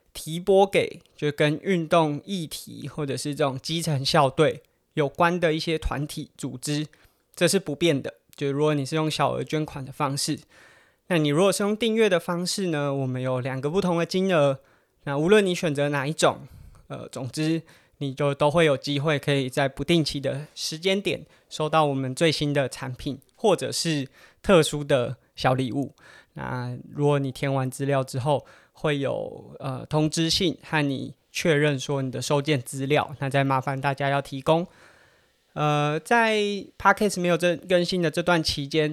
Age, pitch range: 20-39, 140-170 Hz